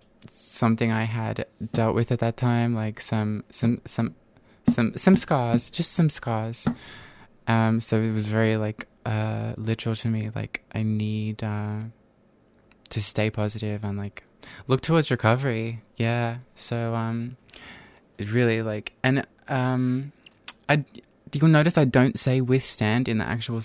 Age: 20-39